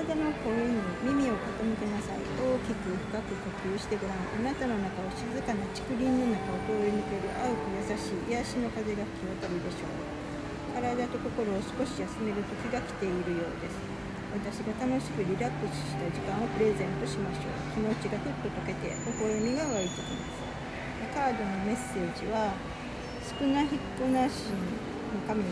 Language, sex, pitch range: Japanese, female, 200-245 Hz